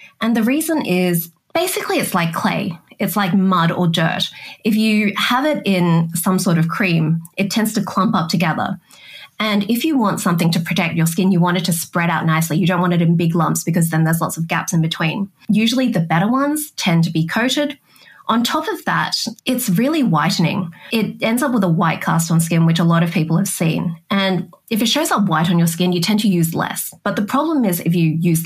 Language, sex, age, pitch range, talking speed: English, female, 20-39, 165-205 Hz, 235 wpm